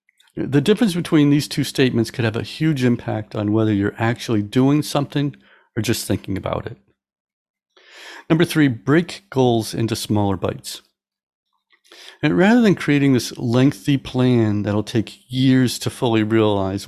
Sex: male